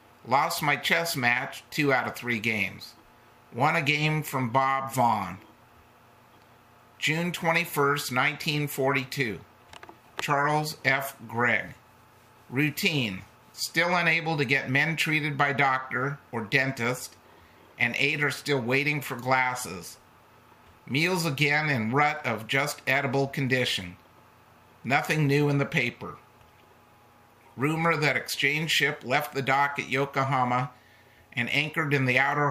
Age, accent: 50-69, American